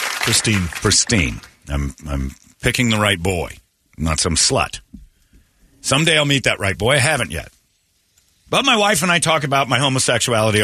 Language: English